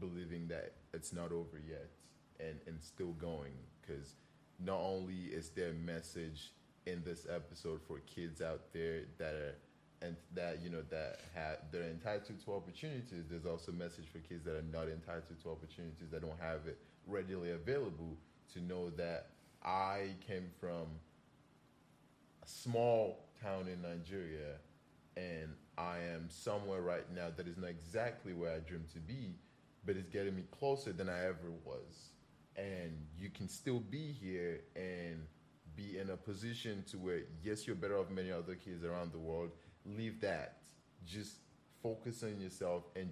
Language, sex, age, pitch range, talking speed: English, male, 30-49, 80-95 Hz, 170 wpm